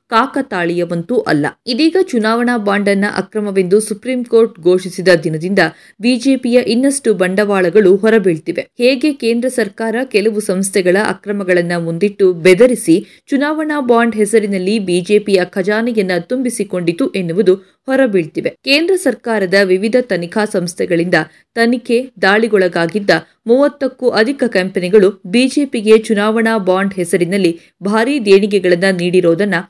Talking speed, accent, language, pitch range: 95 wpm, native, Kannada, 185-240 Hz